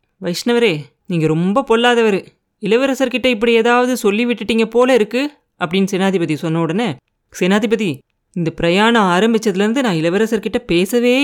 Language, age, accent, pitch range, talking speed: Tamil, 30-49, native, 175-230 Hz, 115 wpm